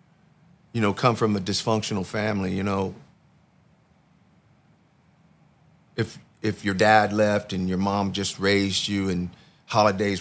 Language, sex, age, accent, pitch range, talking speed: English, male, 40-59, American, 100-120 Hz, 130 wpm